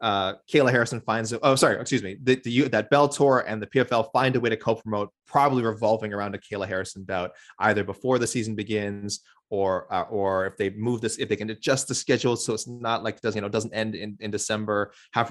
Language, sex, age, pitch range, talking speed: English, male, 20-39, 105-130 Hz, 240 wpm